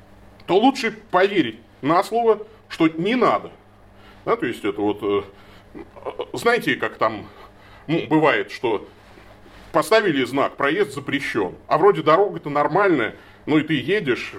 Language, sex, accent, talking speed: Russian, male, native, 135 wpm